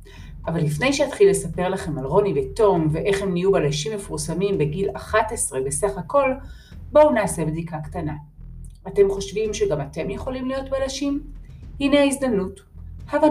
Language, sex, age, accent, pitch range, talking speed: Hebrew, female, 40-59, native, 150-225 Hz, 140 wpm